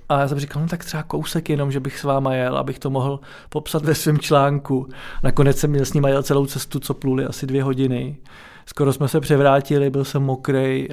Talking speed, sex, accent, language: 215 wpm, male, native, Czech